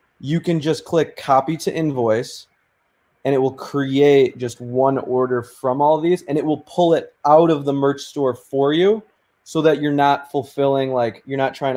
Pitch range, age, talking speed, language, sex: 115-140 Hz, 20-39, 195 wpm, English, male